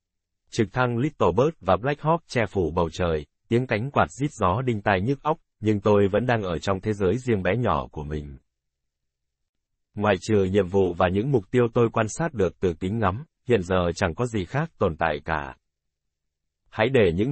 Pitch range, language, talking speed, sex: 85-115 Hz, Vietnamese, 210 wpm, male